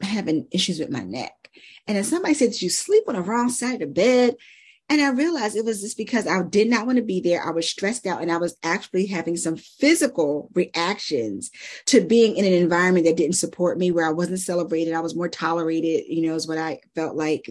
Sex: female